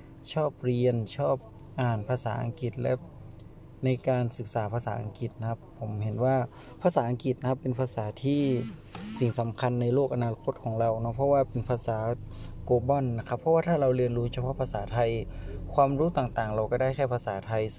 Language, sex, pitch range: Thai, male, 115-135 Hz